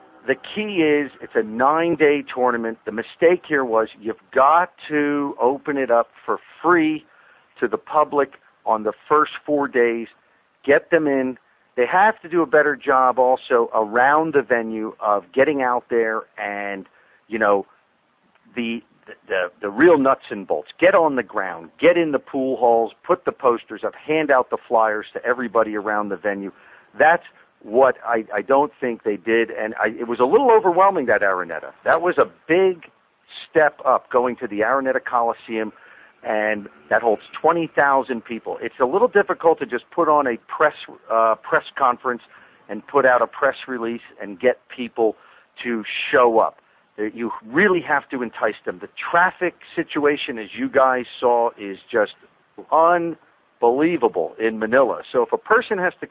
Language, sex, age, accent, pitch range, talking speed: English, male, 50-69, American, 115-150 Hz, 170 wpm